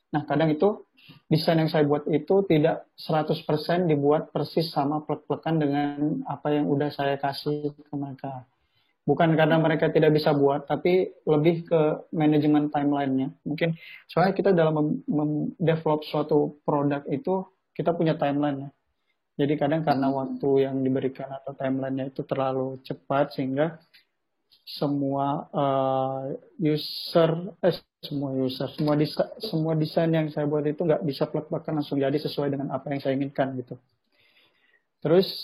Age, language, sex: 30-49, Indonesian, male